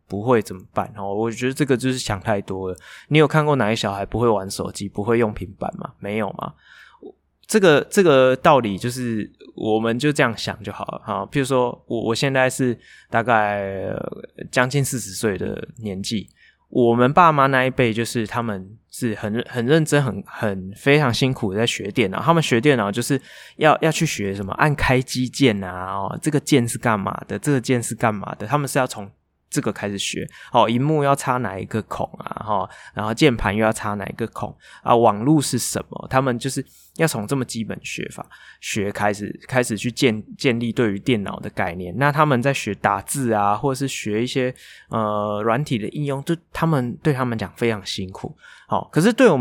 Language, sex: Chinese, male